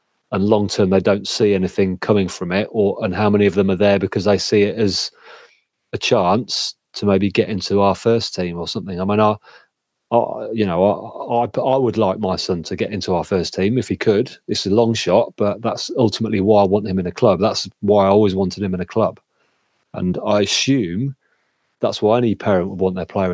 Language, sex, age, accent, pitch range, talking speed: English, male, 30-49, British, 90-105 Hz, 230 wpm